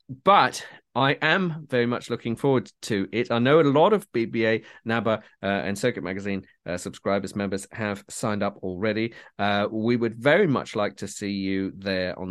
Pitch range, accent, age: 100-130 Hz, British, 30-49